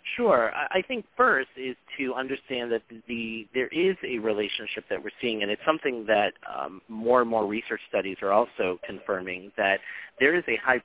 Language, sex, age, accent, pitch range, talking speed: English, male, 40-59, American, 100-125 Hz, 190 wpm